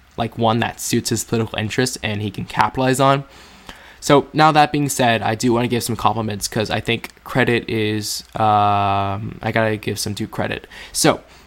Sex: male